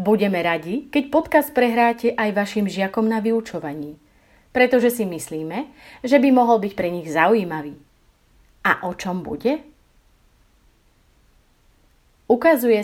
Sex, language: female, Slovak